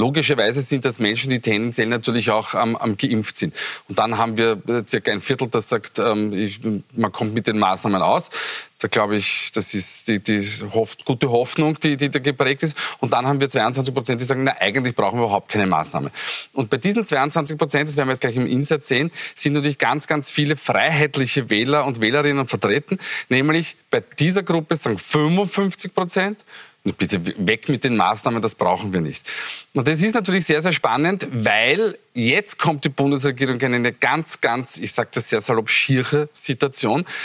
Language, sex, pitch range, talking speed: German, male, 115-150 Hz, 190 wpm